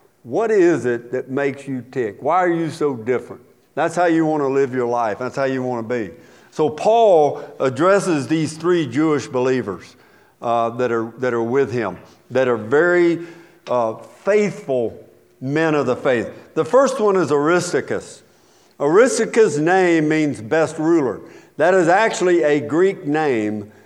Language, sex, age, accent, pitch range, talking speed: English, male, 50-69, American, 130-165 Hz, 160 wpm